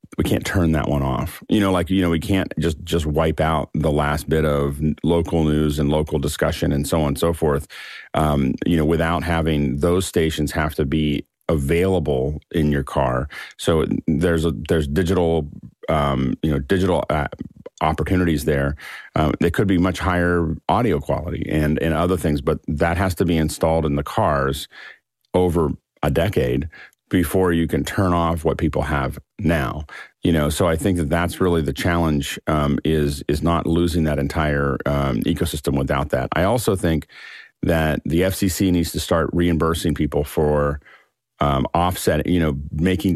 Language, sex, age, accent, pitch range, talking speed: English, male, 40-59, American, 75-85 Hz, 180 wpm